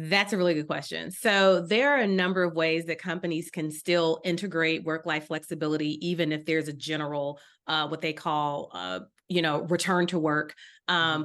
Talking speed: 185 wpm